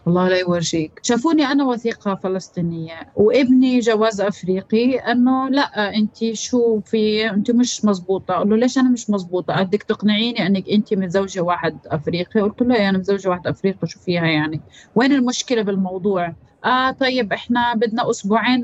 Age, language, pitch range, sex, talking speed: 30-49, Arabic, 190-245 Hz, female, 155 wpm